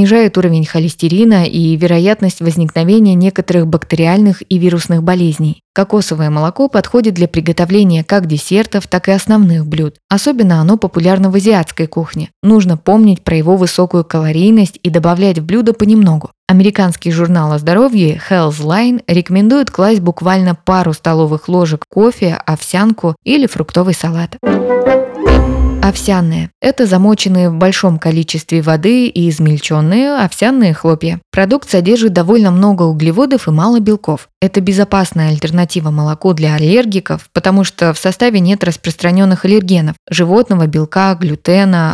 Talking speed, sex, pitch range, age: 125 wpm, female, 165-205 Hz, 20-39